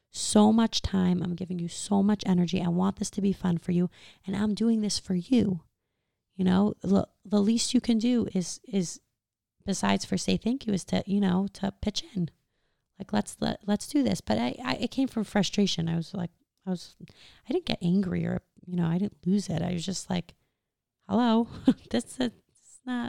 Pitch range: 170-215 Hz